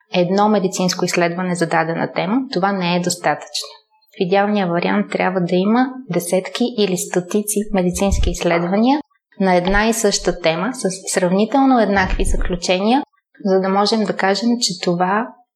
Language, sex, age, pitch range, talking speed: Bulgarian, female, 20-39, 185-225 Hz, 145 wpm